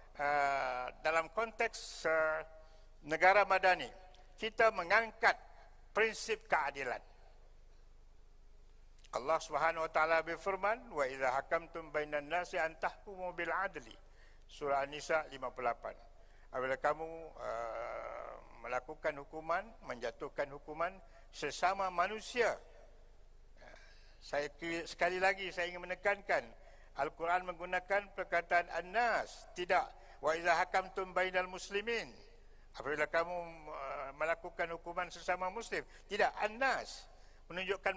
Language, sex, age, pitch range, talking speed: Malay, male, 60-79, 150-185 Hz, 90 wpm